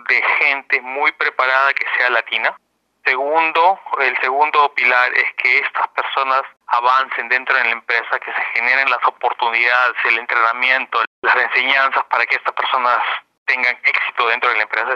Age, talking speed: 30-49, 155 wpm